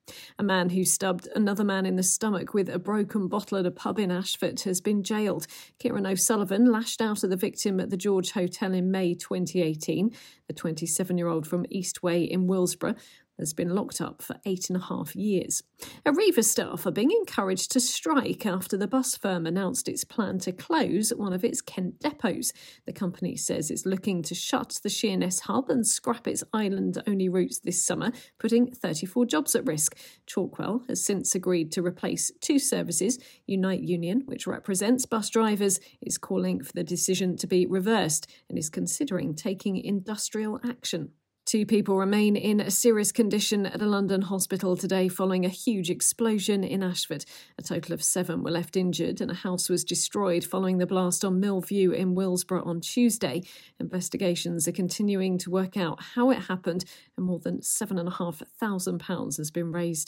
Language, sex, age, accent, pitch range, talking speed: English, female, 40-59, British, 180-220 Hz, 175 wpm